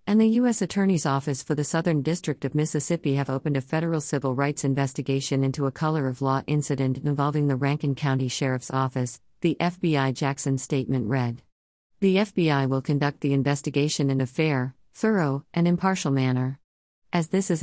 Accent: American